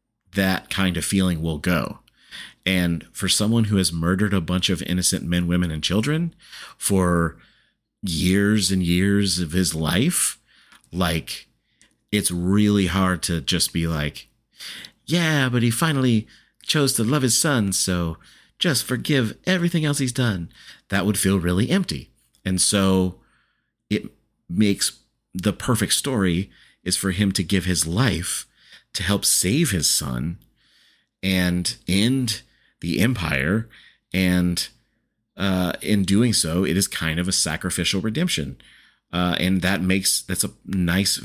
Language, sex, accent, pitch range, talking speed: English, male, American, 90-110 Hz, 145 wpm